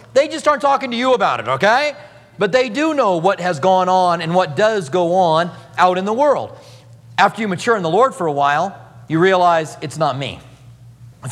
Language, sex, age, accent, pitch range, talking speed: English, male, 40-59, American, 125-190 Hz, 215 wpm